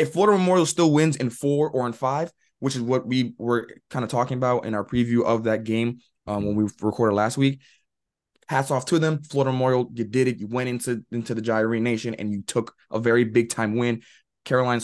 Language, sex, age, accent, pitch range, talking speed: English, male, 20-39, American, 120-155 Hz, 225 wpm